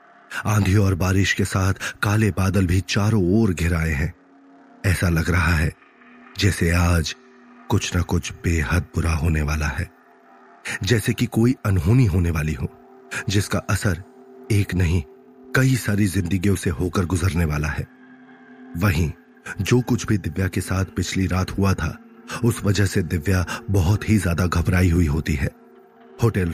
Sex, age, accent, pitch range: male, 30-49, native, 90-115 Hz